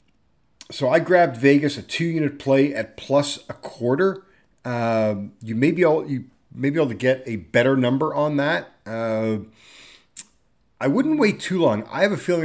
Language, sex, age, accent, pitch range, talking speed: English, male, 40-59, American, 110-145 Hz, 175 wpm